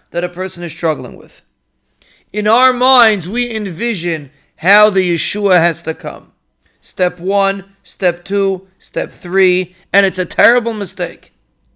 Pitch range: 180-235 Hz